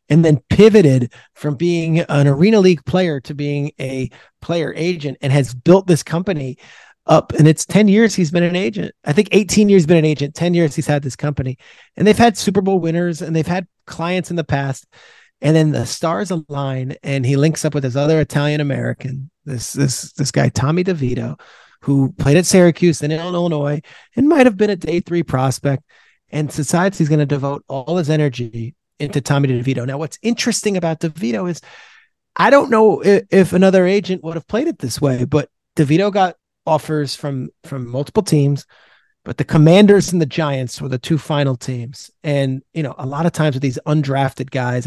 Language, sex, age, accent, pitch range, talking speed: English, male, 30-49, American, 140-180 Hz, 200 wpm